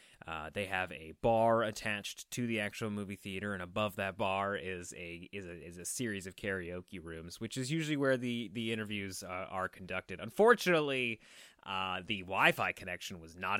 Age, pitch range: 20-39, 100-155 Hz